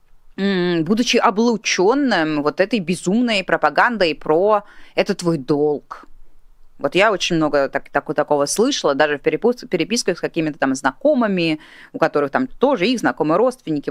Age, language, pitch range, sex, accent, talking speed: 30-49, Russian, 165-240 Hz, female, native, 140 wpm